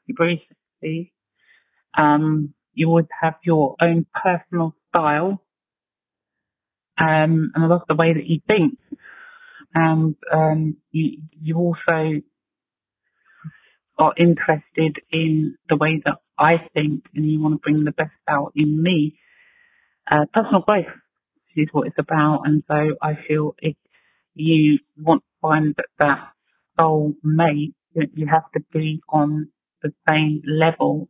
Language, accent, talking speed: English, British, 135 wpm